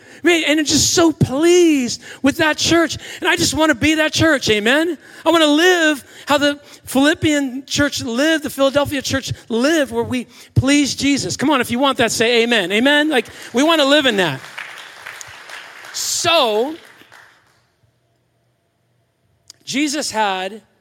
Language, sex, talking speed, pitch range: English, male, 160 wpm, 190-275 Hz